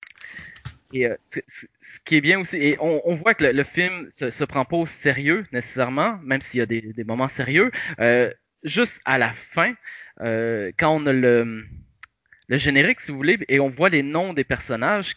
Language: French